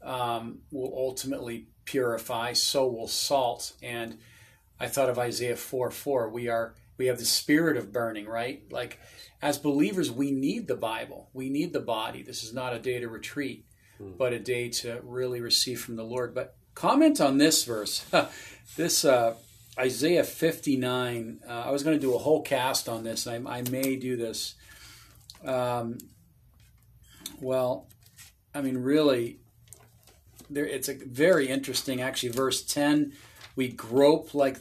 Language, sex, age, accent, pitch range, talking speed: English, male, 40-59, American, 115-135 Hz, 160 wpm